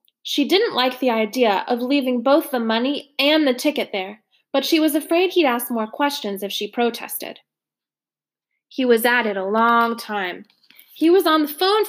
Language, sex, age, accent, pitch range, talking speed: English, female, 20-39, American, 215-300 Hz, 185 wpm